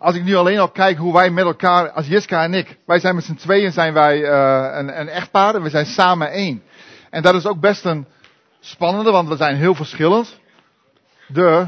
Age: 50-69